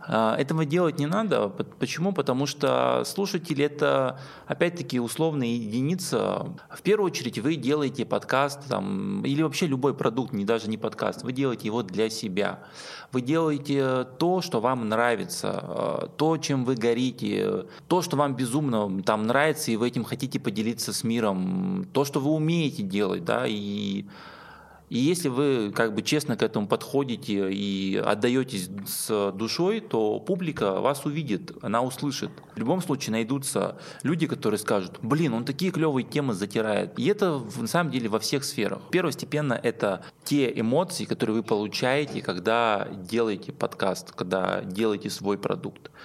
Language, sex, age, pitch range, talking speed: Russian, male, 20-39, 110-155 Hz, 145 wpm